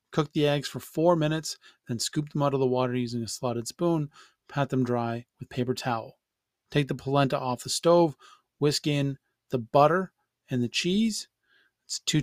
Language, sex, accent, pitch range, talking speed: English, male, American, 125-145 Hz, 185 wpm